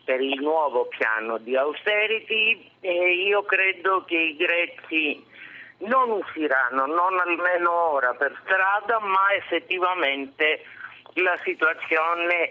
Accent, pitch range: native, 150-195 Hz